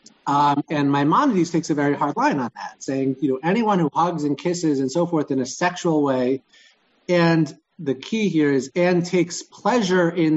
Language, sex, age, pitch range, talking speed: English, male, 30-49, 130-175 Hz, 195 wpm